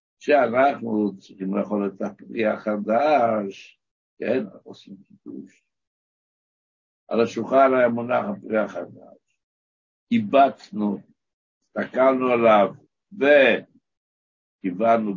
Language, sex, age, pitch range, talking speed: Hebrew, male, 60-79, 105-150 Hz, 75 wpm